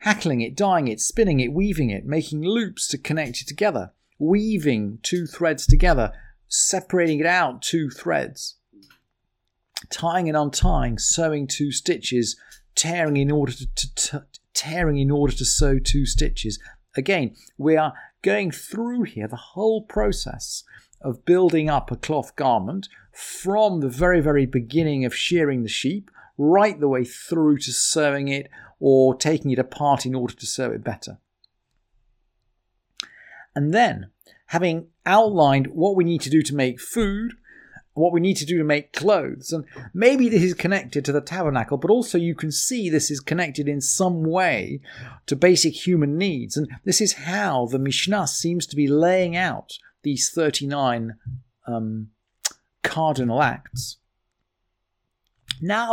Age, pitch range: 40-59, 125-175 Hz